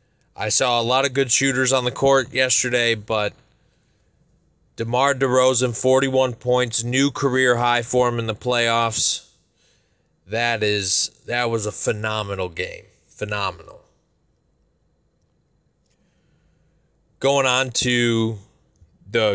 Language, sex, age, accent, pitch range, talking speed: English, male, 20-39, American, 110-140 Hz, 110 wpm